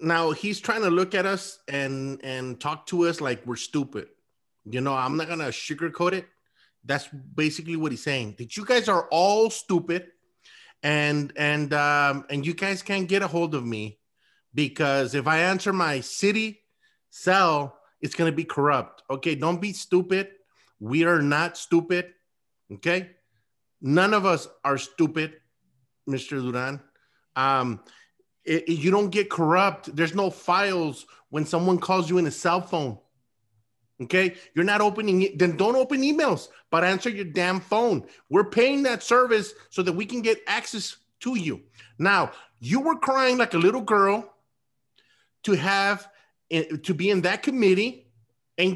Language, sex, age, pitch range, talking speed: English, male, 30-49, 140-200 Hz, 160 wpm